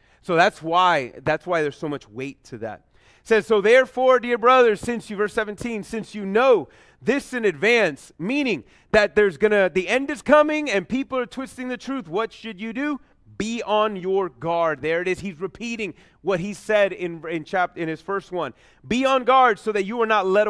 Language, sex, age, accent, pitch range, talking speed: English, male, 30-49, American, 180-250 Hz, 215 wpm